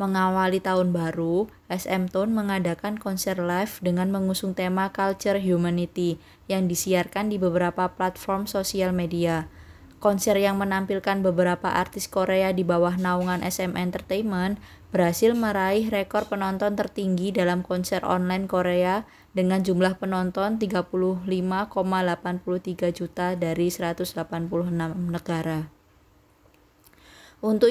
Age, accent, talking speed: 20-39, native, 105 wpm